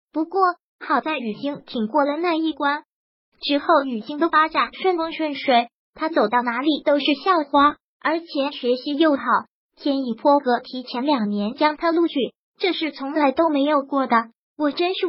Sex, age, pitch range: male, 20-39, 255-315 Hz